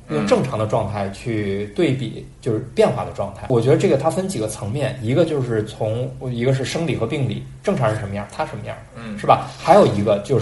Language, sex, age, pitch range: Chinese, male, 20-39, 110-140 Hz